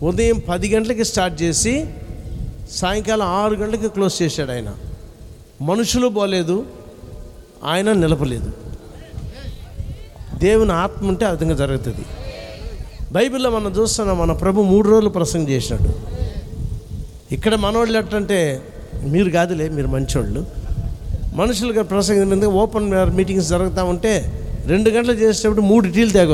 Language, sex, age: Telugu, male, 60-79